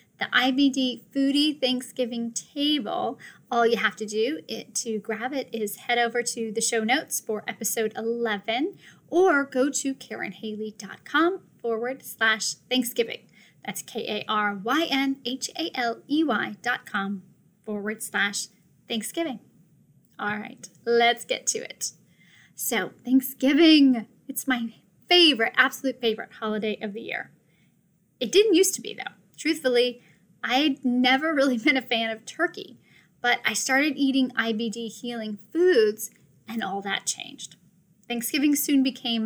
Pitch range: 220-270 Hz